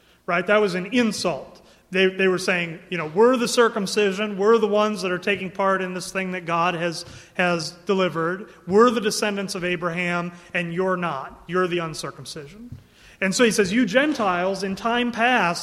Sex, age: male, 30-49